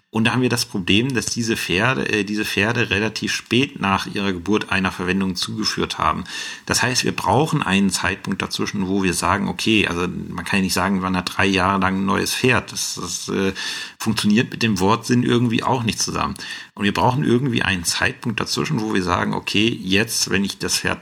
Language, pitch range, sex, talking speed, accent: German, 95-110 Hz, male, 210 wpm, German